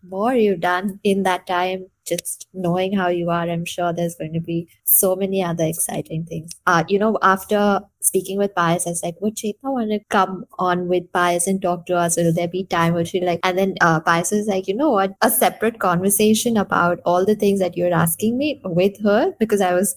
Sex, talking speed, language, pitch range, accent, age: female, 230 wpm, English, 170-200 Hz, Indian, 20-39